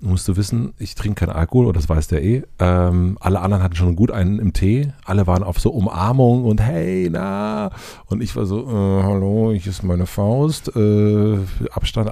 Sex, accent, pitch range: male, German, 85-105 Hz